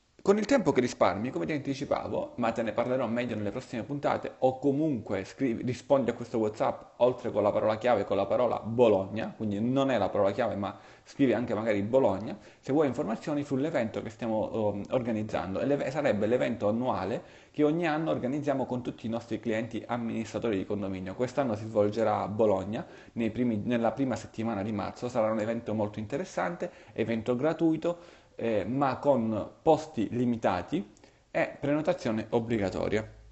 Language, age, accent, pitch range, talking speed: Italian, 30-49, native, 110-140 Hz, 160 wpm